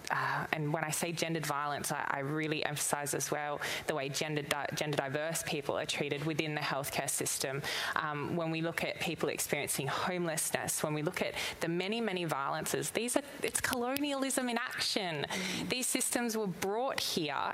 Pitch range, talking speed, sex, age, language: 165-230 Hz, 180 wpm, female, 20-39, English